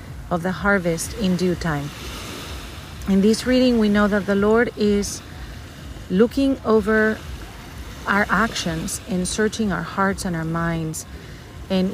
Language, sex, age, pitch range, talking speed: English, female, 40-59, 170-215 Hz, 135 wpm